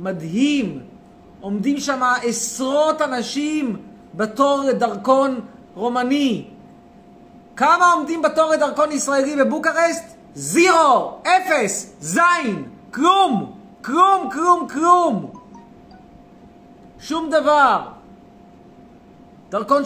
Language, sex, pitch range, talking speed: Hebrew, male, 230-305 Hz, 75 wpm